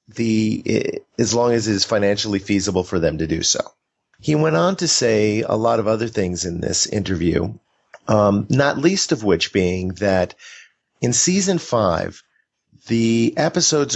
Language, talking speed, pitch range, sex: English, 170 wpm, 95-120 Hz, male